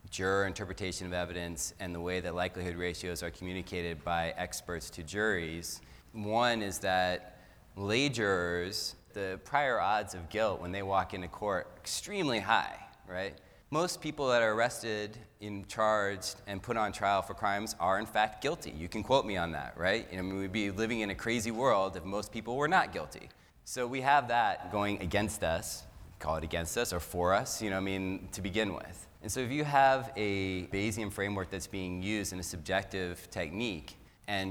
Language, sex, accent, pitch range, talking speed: English, male, American, 90-105 Hz, 190 wpm